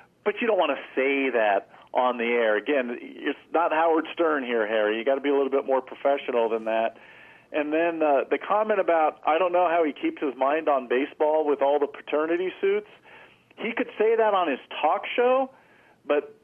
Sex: male